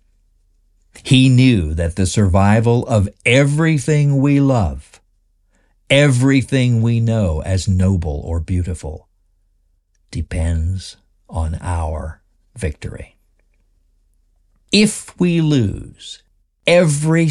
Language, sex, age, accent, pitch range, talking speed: English, male, 60-79, American, 85-115 Hz, 85 wpm